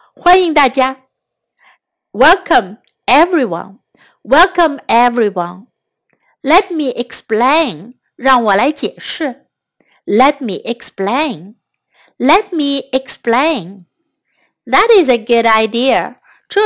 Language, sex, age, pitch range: Chinese, female, 60-79, 225-295 Hz